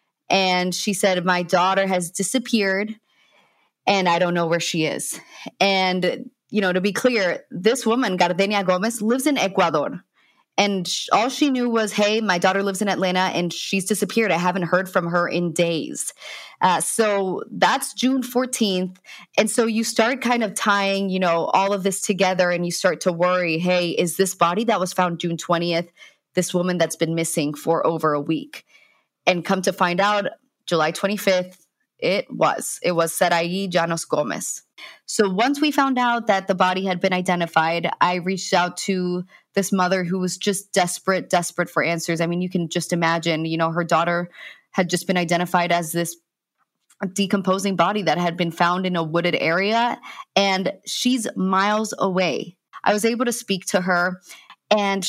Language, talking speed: English, 180 wpm